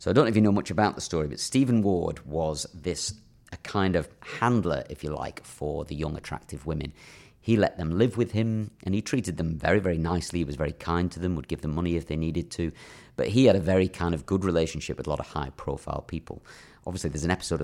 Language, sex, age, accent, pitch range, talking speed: English, male, 40-59, British, 75-95 Hz, 255 wpm